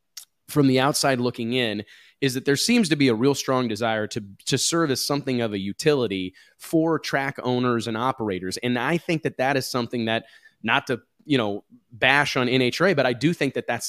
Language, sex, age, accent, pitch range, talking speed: English, male, 20-39, American, 120-150 Hz, 210 wpm